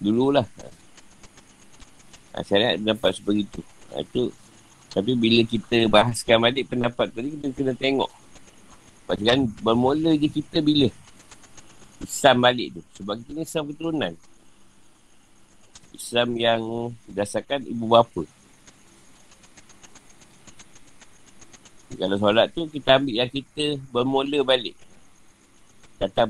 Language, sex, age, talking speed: Malay, male, 50-69, 110 wpm